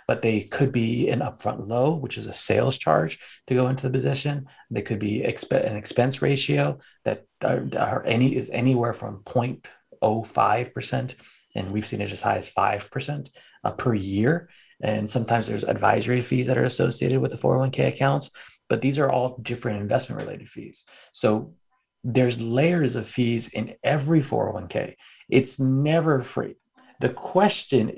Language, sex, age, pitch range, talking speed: English, male, 30-49, 110-135 Hz, 165 wpm